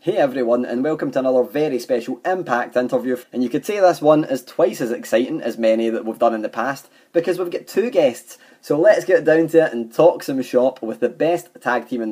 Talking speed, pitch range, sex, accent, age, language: 245 wpm, 125-160 Hz, male, British, 20-39, English